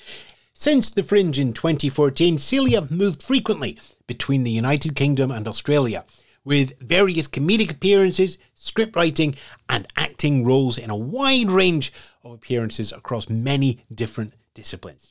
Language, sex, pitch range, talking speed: English, male, 115-155 Hz, 130 wpm